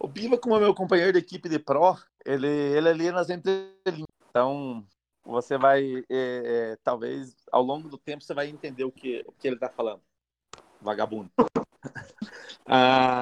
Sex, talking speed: male, 175 wpm